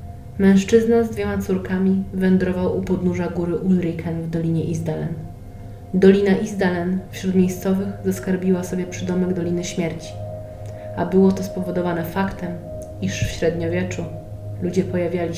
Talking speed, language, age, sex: 120 wpm, Polish, 30-49, female